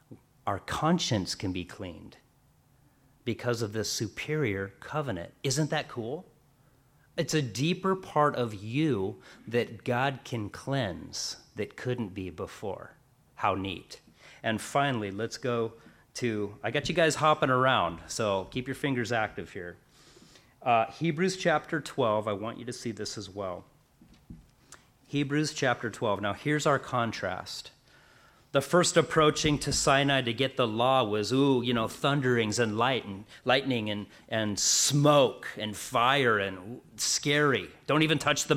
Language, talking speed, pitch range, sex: English, 145 wpm, 110-145 Hz, male